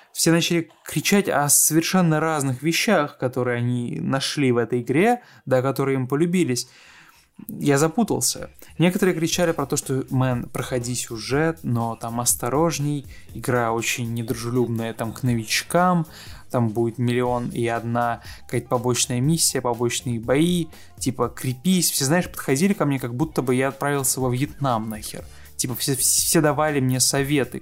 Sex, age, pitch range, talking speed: male, 20-39, 120-155 Hz, 145 wpm